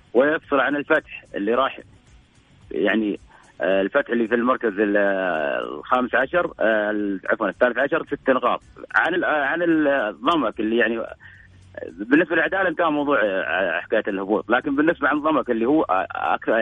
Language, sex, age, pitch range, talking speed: Arabic, male, 40-59, 115-145 Hz, 125 wpm